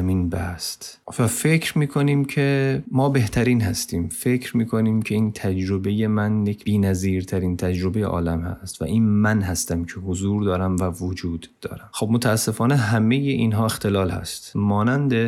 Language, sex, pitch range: Persian, male, 90-110 Hz